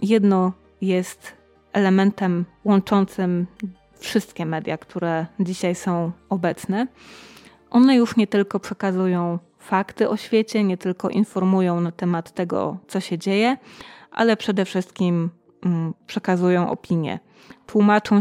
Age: 20-39